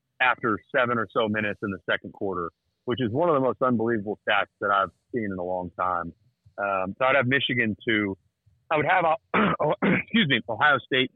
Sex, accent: male, American